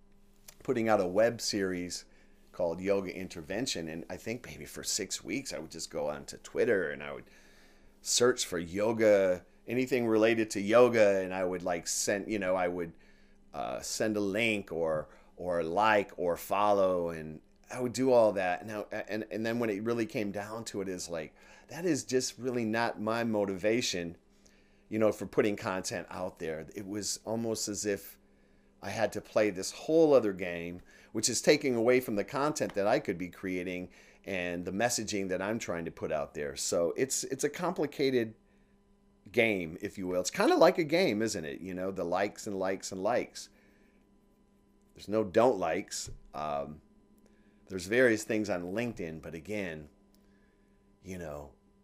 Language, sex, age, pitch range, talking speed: English, male, 30-49, 85-110 Hz, 180 wpm